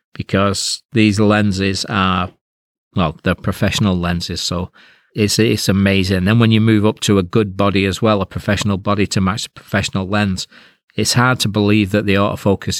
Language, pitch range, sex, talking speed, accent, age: English, 95-110 Hz, male, 180 wpm, British, 40-59